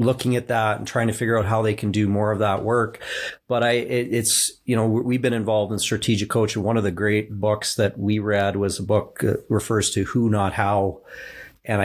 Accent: American